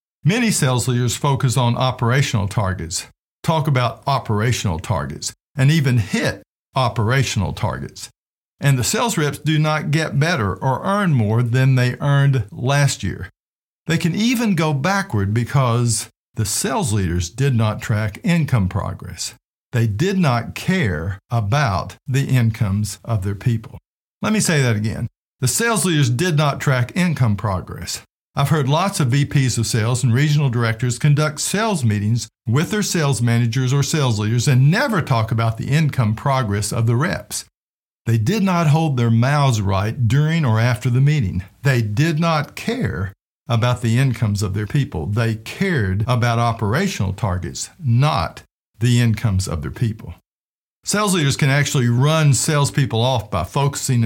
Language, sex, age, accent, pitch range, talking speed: English, male, 50-69, American, 110-145 Hz, 155 wpm